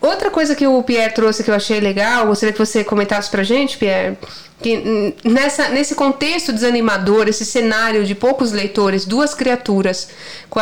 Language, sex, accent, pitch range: Portuguese, female, Brazilian, 210-260 Hz